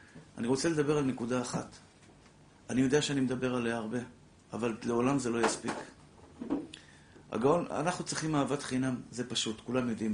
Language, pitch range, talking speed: Hebrew, 115-145 Hz, 155 wpm